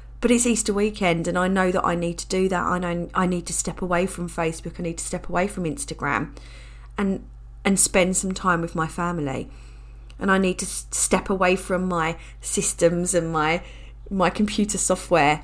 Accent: British